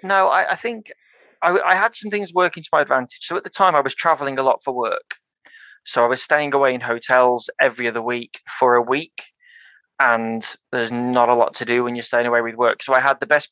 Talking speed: 245 wpm